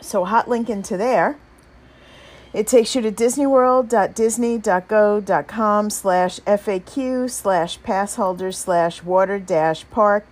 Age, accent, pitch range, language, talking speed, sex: 50-69, American, 165-240 Hz, English, 105 wpm, female